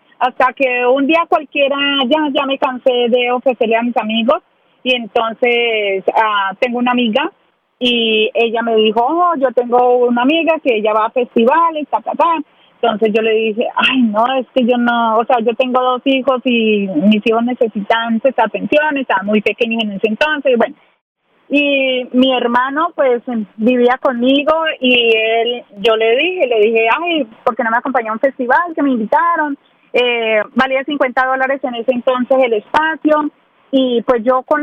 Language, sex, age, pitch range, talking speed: Spanish, female, 30-49, 235-280 Hz, 185 wpm